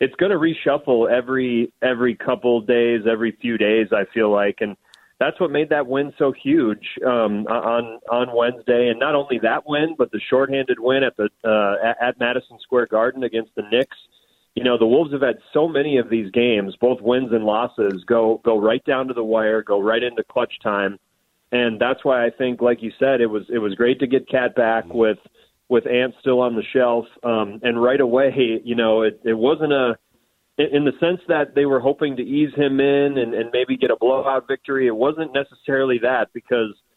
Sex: male